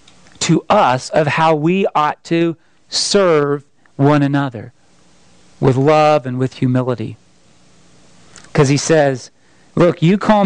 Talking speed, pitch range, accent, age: 120 wpm, 130-185 Hz, American, 40-59